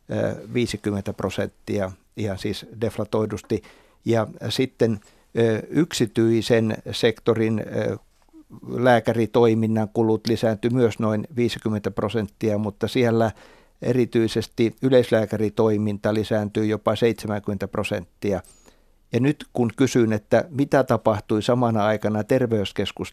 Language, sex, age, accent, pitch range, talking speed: Finnish, male, 60-79, native, 105-120 Hz, 90 wpm